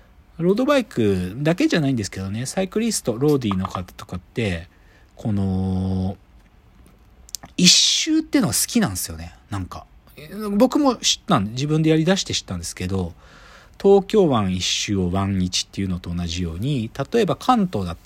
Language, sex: Japanese, male